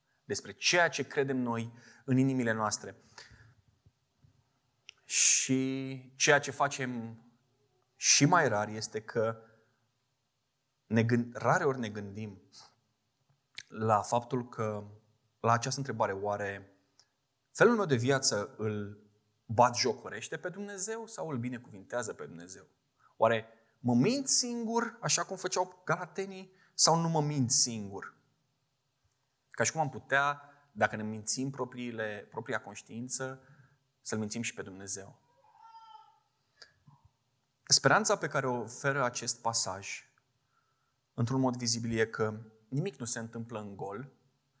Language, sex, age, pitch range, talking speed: Romanian, male, 20-39, 115-140 Hz, 120 wpm